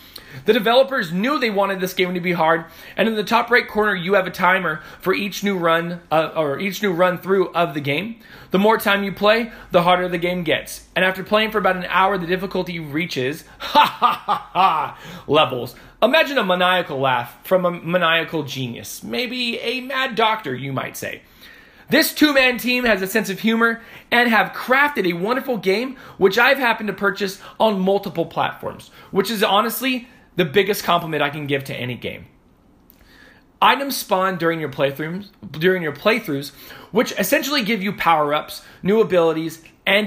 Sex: male